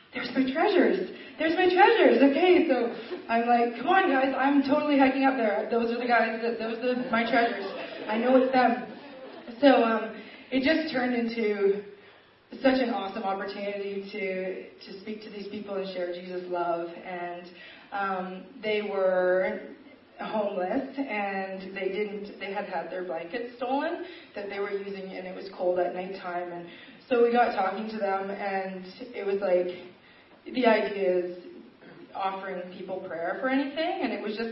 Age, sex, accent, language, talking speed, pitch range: 20-39, female, American, English, 170 wpm, 195-255 Hz